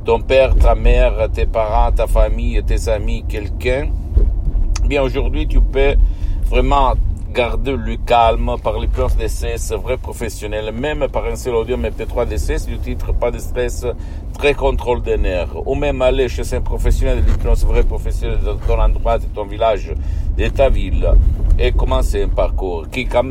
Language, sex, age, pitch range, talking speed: Italian, male, 50-69, 80-115 Hz, 175 wpm